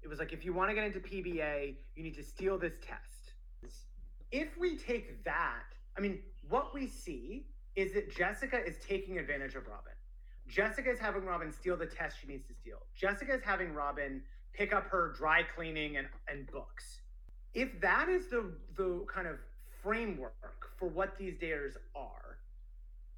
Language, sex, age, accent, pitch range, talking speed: English, male, 30-49, American, 155-215 Hz, 180 wpm